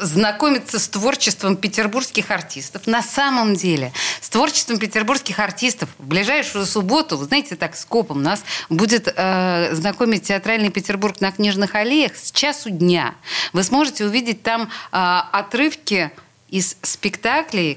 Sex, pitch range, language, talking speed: female, 165-215 Hz, Russian, 130 wpm